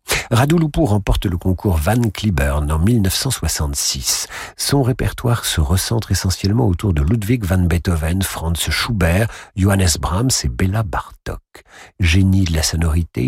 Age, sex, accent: 50-69, male, French